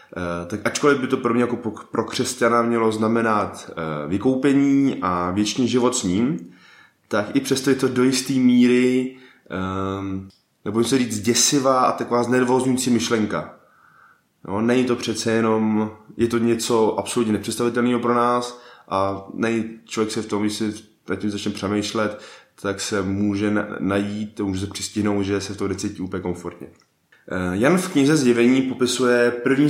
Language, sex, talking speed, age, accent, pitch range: Czech, male, 155 wpm, 20-39, native, 100-125 Hz